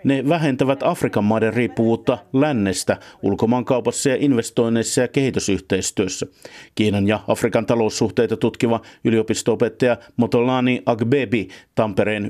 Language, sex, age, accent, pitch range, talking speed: Finnish, male, 50-69, native, 110-135 Hz, 100 wpm